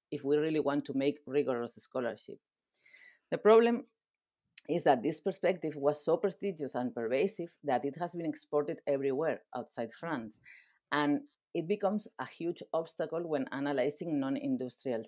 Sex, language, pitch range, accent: female, English, 140-200 Hz, Spanish